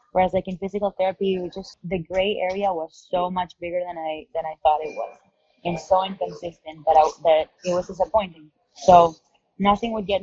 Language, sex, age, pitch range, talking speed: English, female, 20-39, 165-190 Hz, 205 wpm